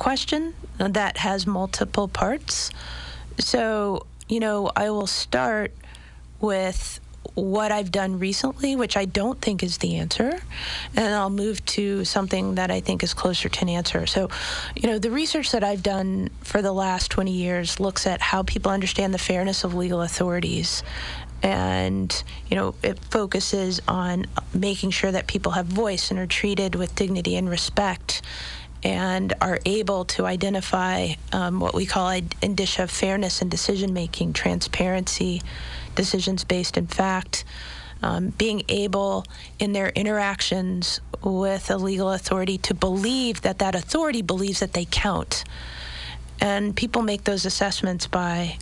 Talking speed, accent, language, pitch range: 150 wpm, American, English, 175-200 Hz